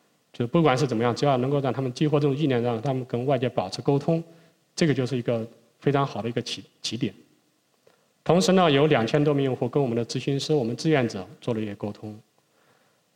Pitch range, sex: 115-145 Hz, male